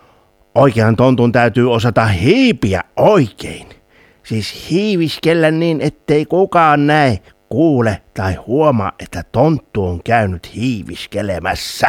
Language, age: Finnish, 60-79